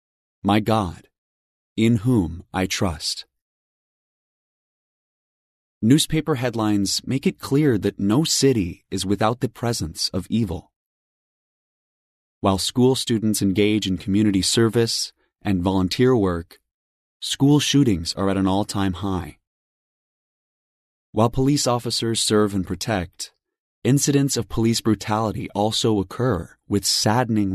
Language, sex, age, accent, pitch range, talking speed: English, male, 30-49, American, 95-115 Hz, 110 wpm